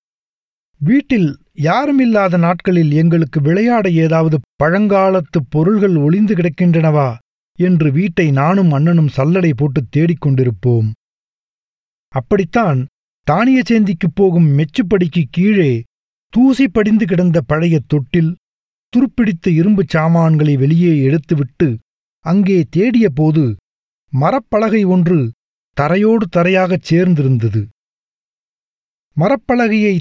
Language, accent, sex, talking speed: Tamil, native, male, 85 wpm